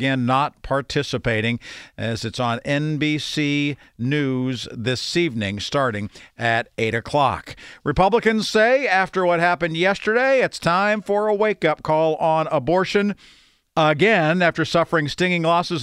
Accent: American